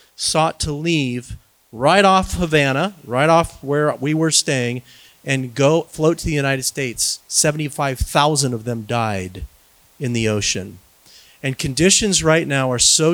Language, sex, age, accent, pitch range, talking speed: English, male, 40-59, American, 115-155 Hz, 145 wpm